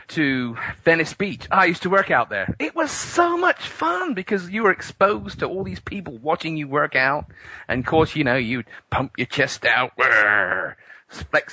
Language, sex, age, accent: English, male, 30-49, British